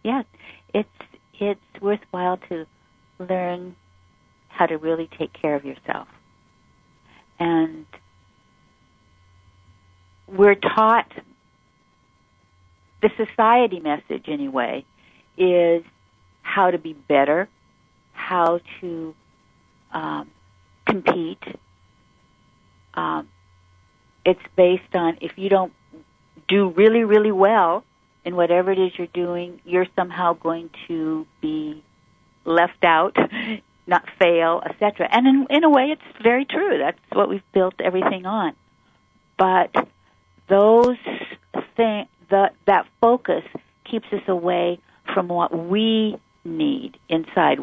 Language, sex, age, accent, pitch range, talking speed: English, female, 50-69, American, 150-210 Hz, 105 wpm